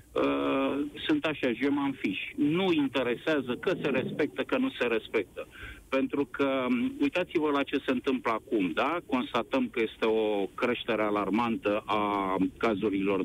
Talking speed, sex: 135 wpm, male